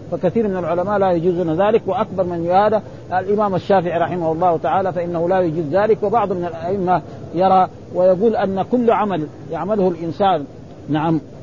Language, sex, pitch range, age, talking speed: Arabic, male, 165-205 Hz, 50-69, 150 wpm